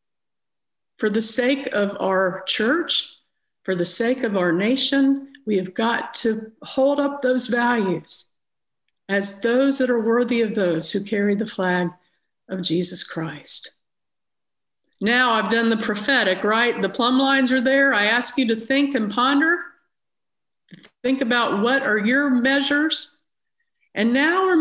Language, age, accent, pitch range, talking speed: English, 50-69, American, 215-275 Hz, 150 wpm